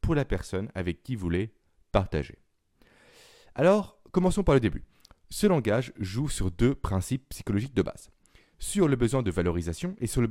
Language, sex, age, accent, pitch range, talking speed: French, male, 30-49, French, 95-145 Hz, 175 wpm